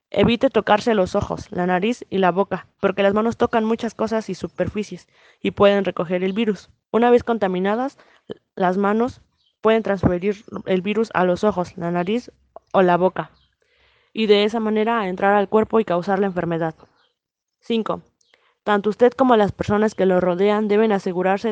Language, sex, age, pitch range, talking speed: English, female, 20-39, 185-220 Hz, 170 wpm